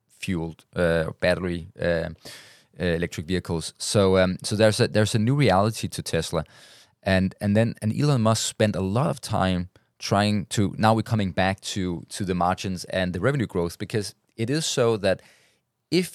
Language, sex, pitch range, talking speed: English, male, 90-115 Hz, 180 wpm